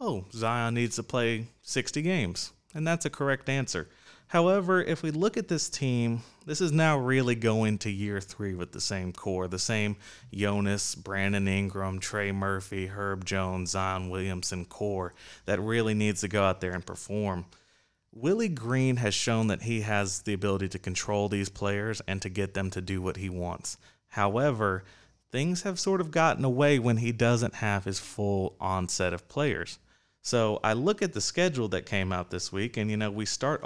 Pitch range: 95-120 Hz